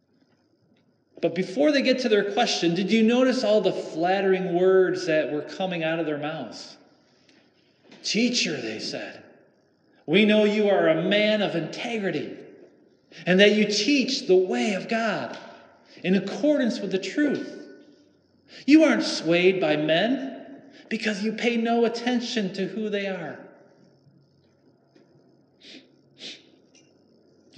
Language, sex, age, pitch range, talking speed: English, male, 40-59, 180-230 Hz, 130 wpm